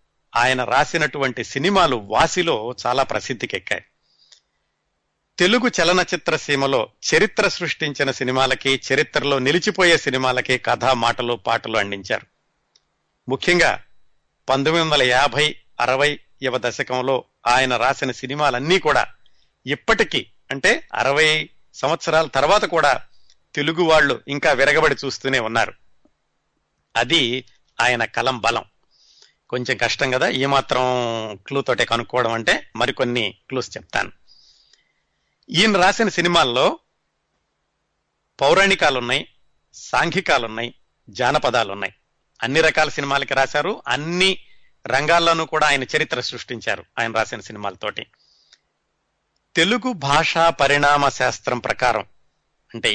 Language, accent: Telugu, native